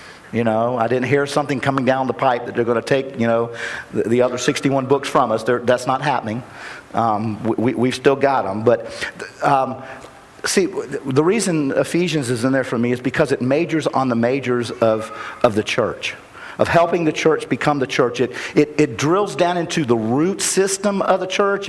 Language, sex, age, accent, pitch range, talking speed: English, male, 50-69, American, 135-195 Hz, 210 wpm